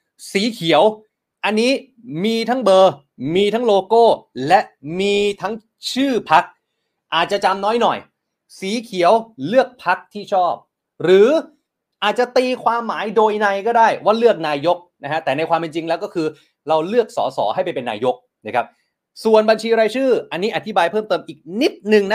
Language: Thai